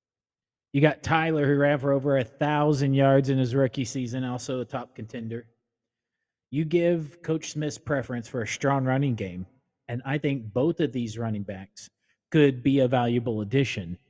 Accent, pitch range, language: American, 115-145 Hz, English